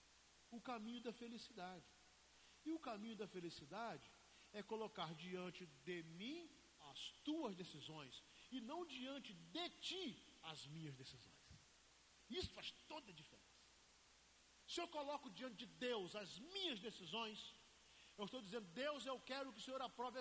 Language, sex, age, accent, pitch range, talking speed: Portuguese, male, 50-69, Brazilian, 185-275 Hz, 145 wpm